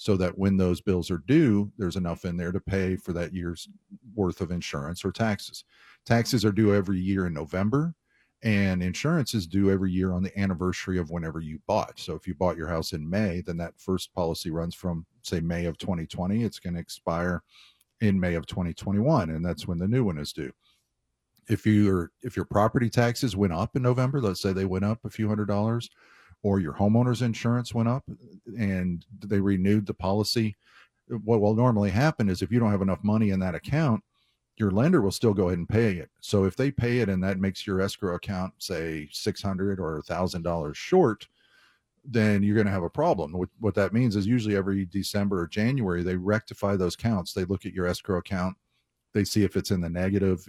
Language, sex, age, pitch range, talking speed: English, male, 50-69, 90-110 Hz, 210 wpm